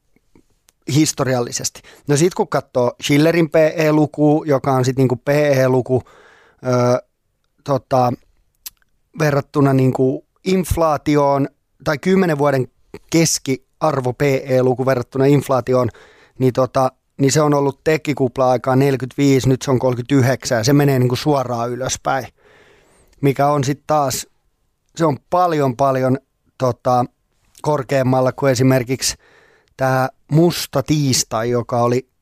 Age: 30-49